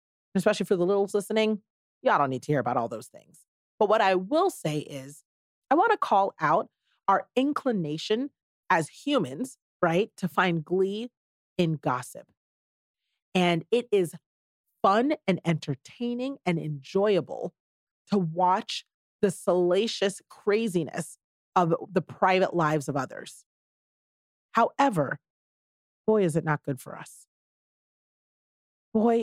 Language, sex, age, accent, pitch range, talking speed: English, female, 40-59, American, 160-215 Hz, 130 wpm